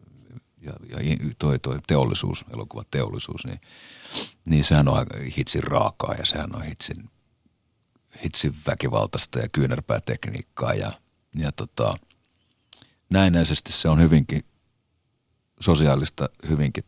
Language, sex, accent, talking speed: Finnish, male, native, 110 wpm